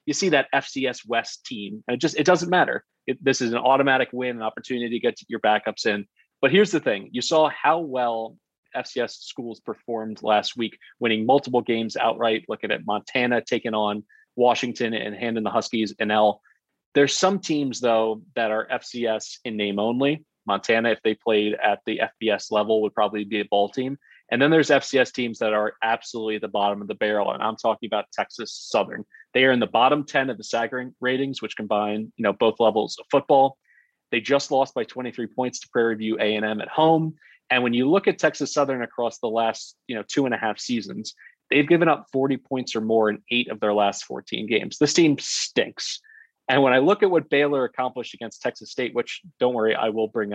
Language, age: English, 30-49